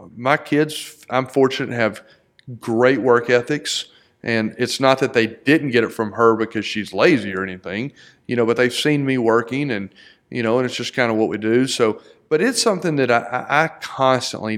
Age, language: 40-59, English